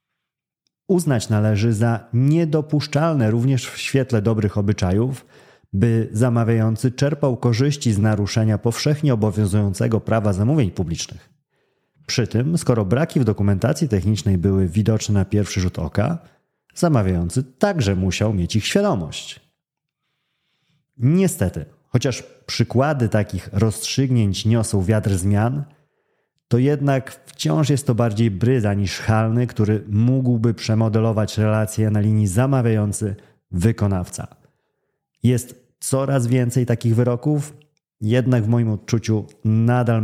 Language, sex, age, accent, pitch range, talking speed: Polish, male, 30-49, native, 105-135 Hz, 110 wpm